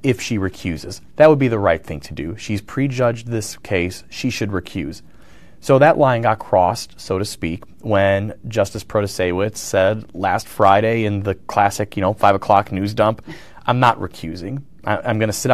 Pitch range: 100-125 Hz